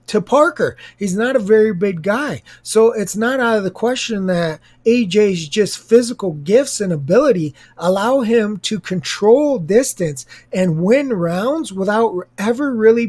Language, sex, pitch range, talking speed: English, male, 180-235 Hz, 150 wpm